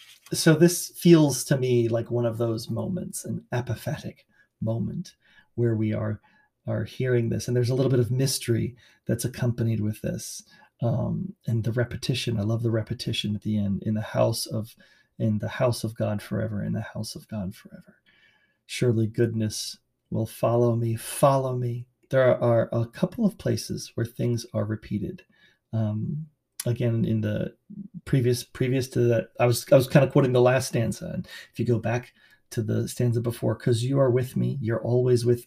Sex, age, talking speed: male, 40-59, 185 wpm